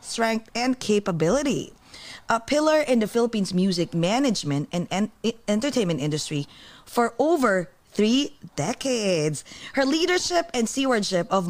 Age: 20-39